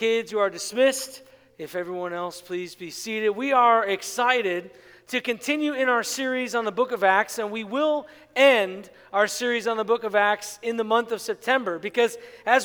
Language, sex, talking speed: English, male, 195 wpm